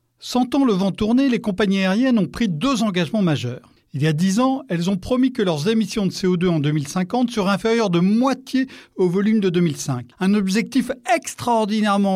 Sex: male